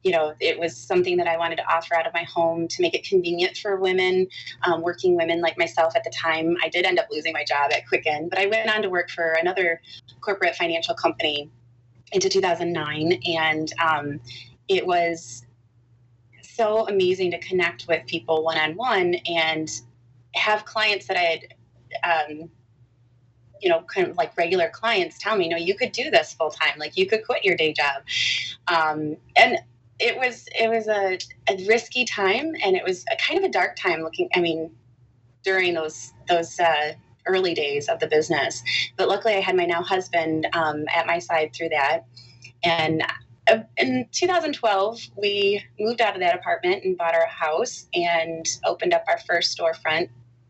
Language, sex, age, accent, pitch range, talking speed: English, female, 30-49, American, 155-215 Hz, 185 wpm